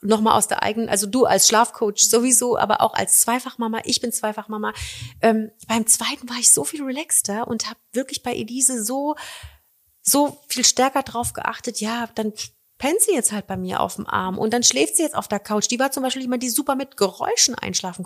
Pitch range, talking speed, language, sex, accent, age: 190-250 Hz, 215 wpm, German, female, German, 30-49